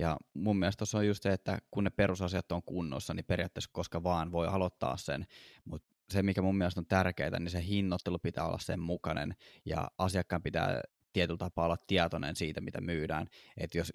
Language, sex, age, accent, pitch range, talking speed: Finnish, male, 20-39, native, 85-95 Hz, 200 wpm